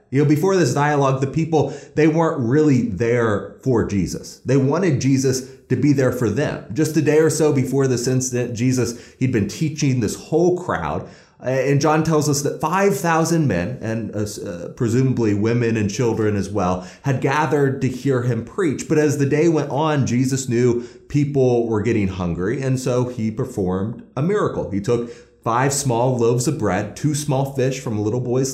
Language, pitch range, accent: English, 115-155 Hz, American